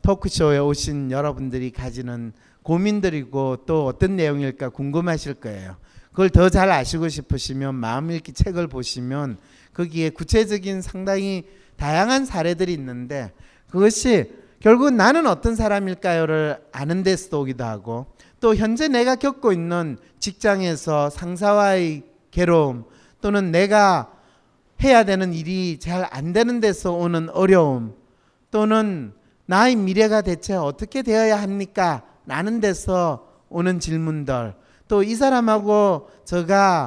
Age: 40-59